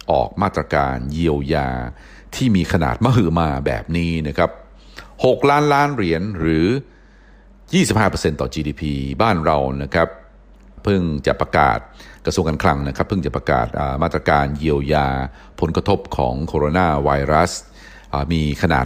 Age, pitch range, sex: 60-79, 70-95 Hz, male